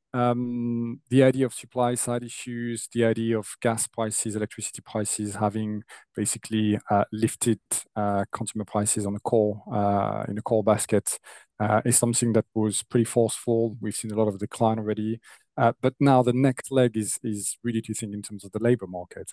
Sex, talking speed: male, 185 wpm